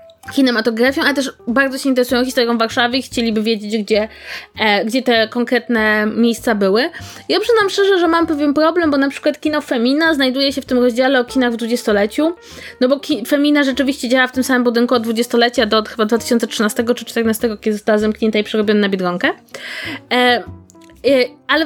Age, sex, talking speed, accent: 20-39, female, 185 wpm, native